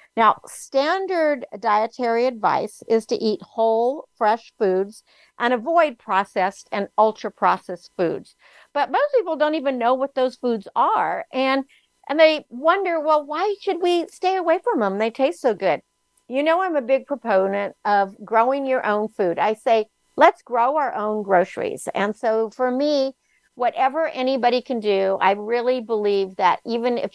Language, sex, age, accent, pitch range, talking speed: English, female, 60-79, American, 210-275 Hz, 165 wpm